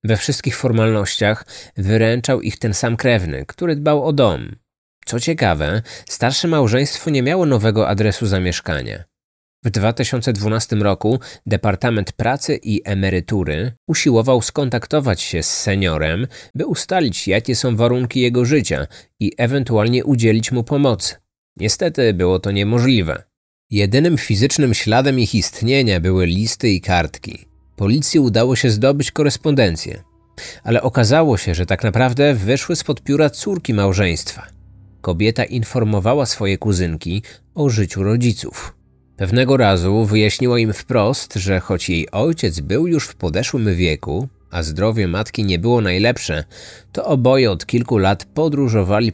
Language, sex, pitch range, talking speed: Polish, male, 95-130 Hz, 130 wpm